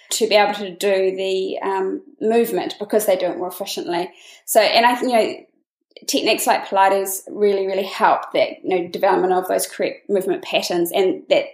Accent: Australian